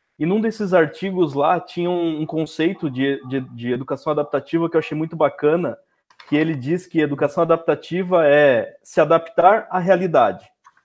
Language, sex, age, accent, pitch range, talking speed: Portuguese, male, 20-39, Brazilian, 145-185 Hz, 160 wpm